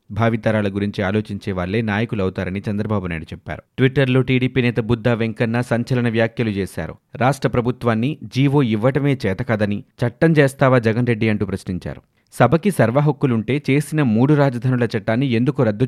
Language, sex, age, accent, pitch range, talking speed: Telugu, male, 30-49, native, 105-130 Hz, 135 wpm